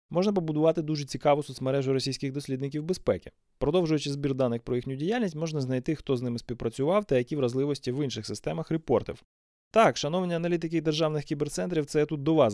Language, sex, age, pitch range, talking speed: Ukrainian, male, 20-39, 120-155 Hz, 175 wpm